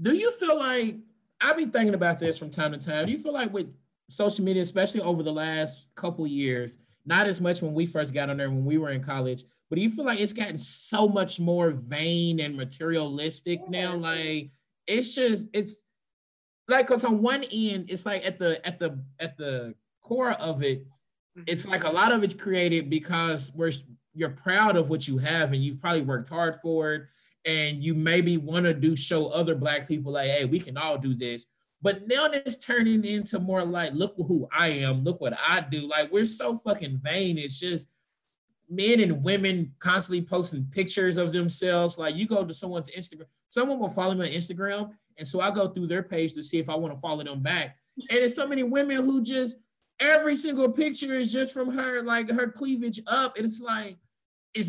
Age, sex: 30-49, male